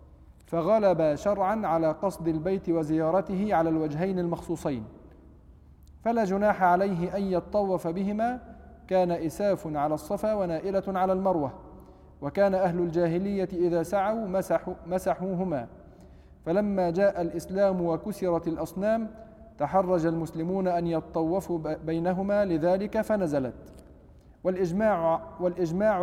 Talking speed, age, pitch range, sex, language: 95 wpm, 40-59, 160-200 Hz, male, Arabic